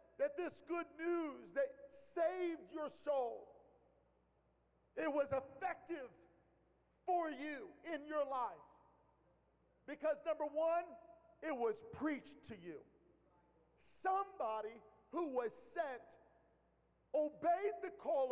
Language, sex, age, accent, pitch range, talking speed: English, male, 50-69, American, 270-310 Hz, 100 wpm